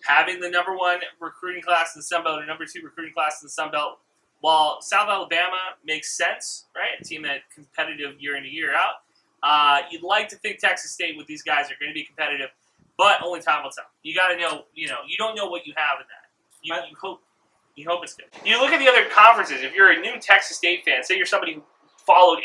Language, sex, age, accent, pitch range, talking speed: English, male, 20-39, American, 155-210 Hz, 250 wpm